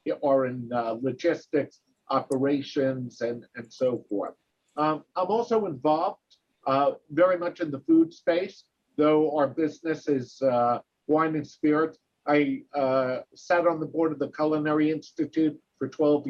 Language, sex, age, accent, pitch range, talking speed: English, male, 50-69, American, 130-155 Hz, 145 wpm